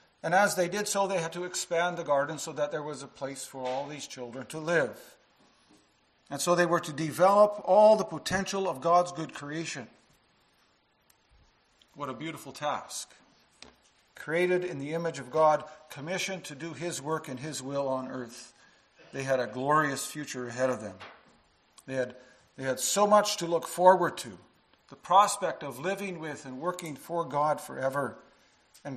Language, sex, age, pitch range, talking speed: English, male, 50-69, 135-180 Hz, 175 wpm